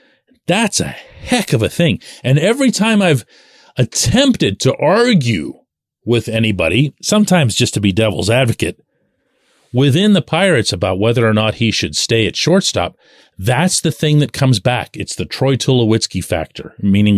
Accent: American